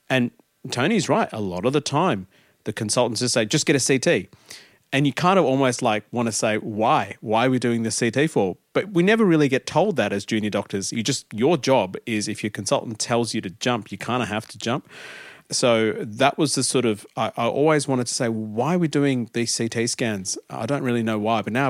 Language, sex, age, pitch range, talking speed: English, male, 40-59, 105-135 Hz, 240 wpm